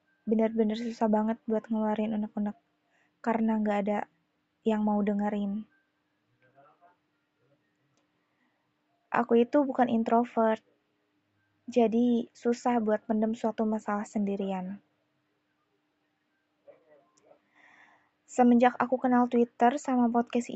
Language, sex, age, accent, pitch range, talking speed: Indonesian, female, 20-39, native, 215-245 Hz, 85 wpm